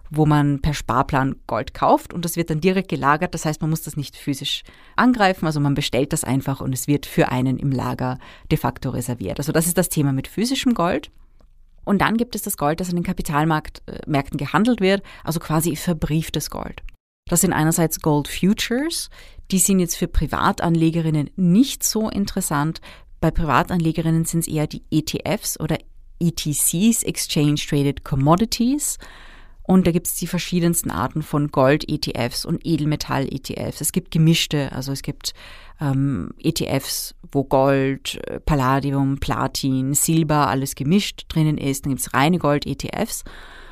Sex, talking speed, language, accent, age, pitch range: female, 160 wpm, German, German, 30-49, 140-175 Hz